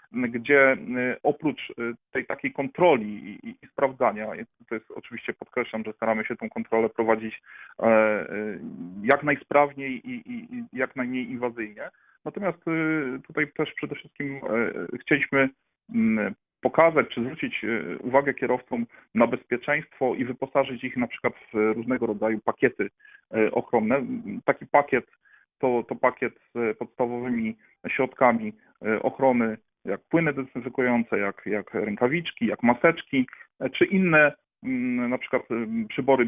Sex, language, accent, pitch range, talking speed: male, Polish, native, 115-145 Hz, 110 wpm